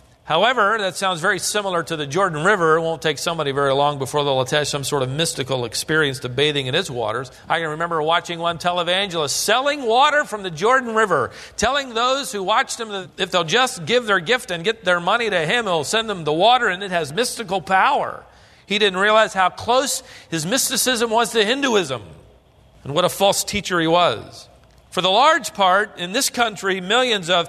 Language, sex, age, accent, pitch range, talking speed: English, male, 40-59, American, 165-220 Hz, 205 wpm